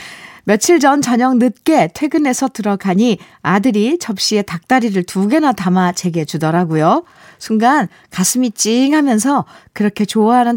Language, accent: Korean, native